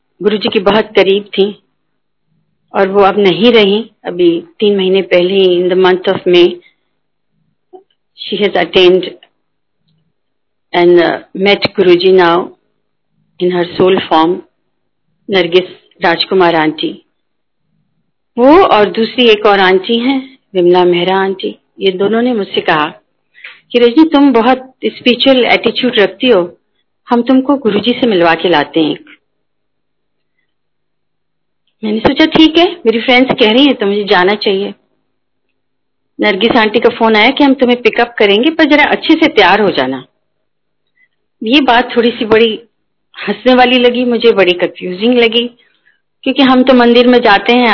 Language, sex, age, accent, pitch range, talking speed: Hindi, female, 50-69, native, 185-240 Hz, 140 wpm